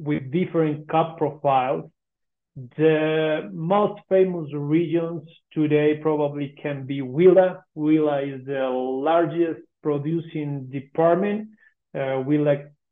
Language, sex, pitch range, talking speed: English, male, 135-160 Hz, 100 wpm